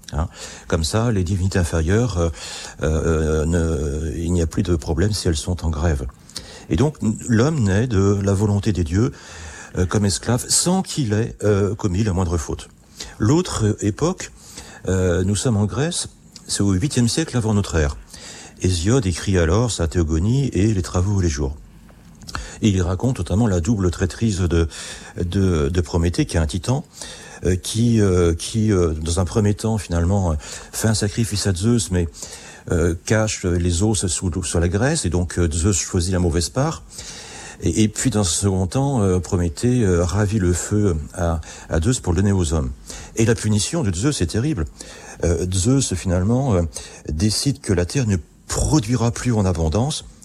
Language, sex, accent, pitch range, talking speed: French, male, French, 85-110 Hz, 180 wpm